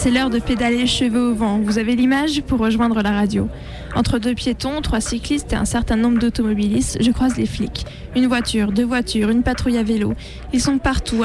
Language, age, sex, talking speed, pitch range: French, 20-39, female, 210 wpm, 230-260 Hz